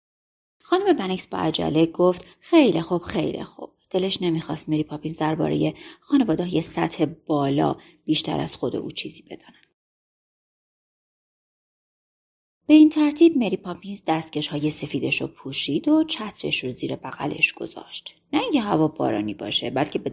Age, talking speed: 30-49, 140 wpm